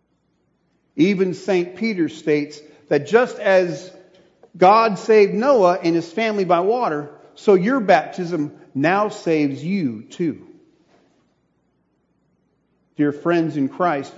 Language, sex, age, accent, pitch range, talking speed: English, male, 50-69, American, 150-210 Hz, 110 wpm